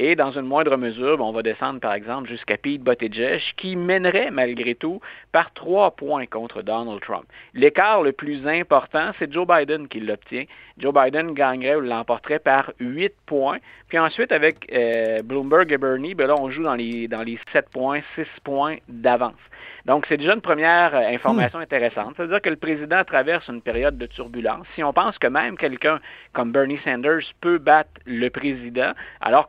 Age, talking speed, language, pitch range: 50-69, 185 wpm, French, 120-170 Hz